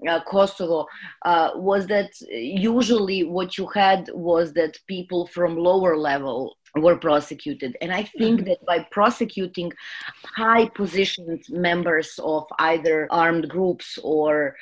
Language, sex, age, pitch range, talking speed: English, female, 30-49, 155-190 Hz, 125 wpm